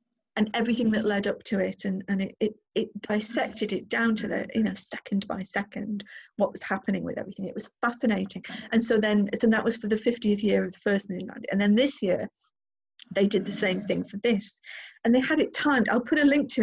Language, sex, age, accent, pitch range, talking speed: English, female, 40-59, British, 200-235 Hz, 240 wpm